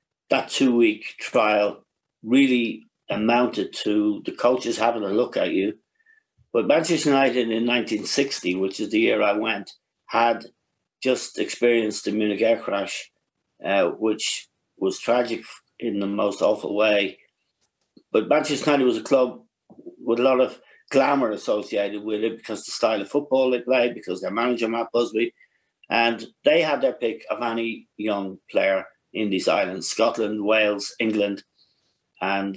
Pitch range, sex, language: 105-130 Hz, male, English